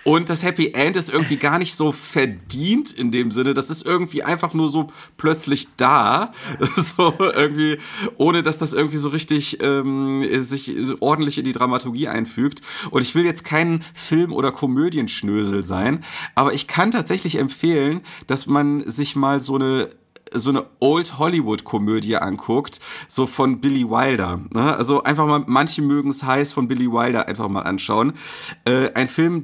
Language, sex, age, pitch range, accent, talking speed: German, male, 30-49, 135-160 Hz, German, 160 wpm